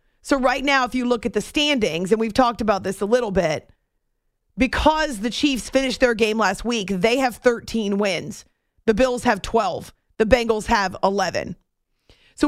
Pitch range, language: 200-245 Hz, English